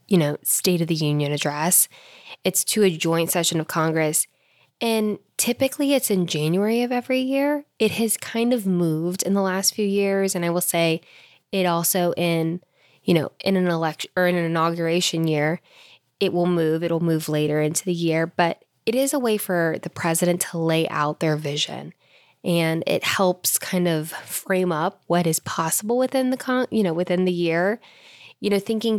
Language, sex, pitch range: English, female, 165-200 Hz